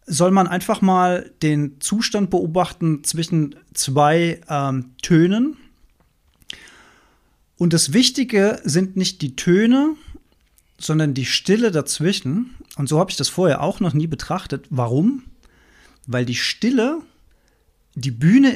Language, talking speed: German, 125 wpm